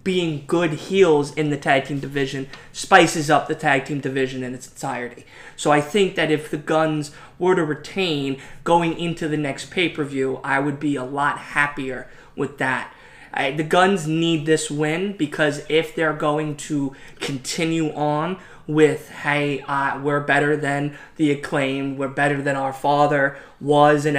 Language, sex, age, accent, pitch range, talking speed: English, male, 20-39, American, 140-160 Hz, 170 wpm